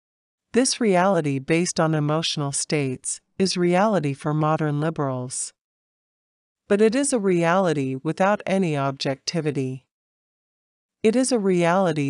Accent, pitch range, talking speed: American, 150-190 Hz, 115 wpm